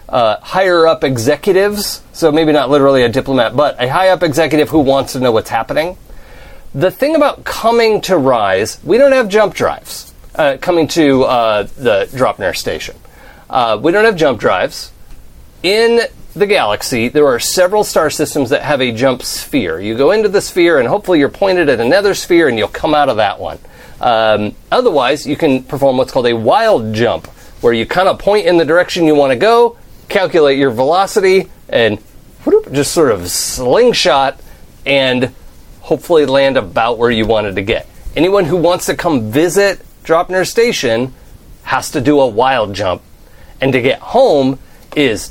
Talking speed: 175 wpm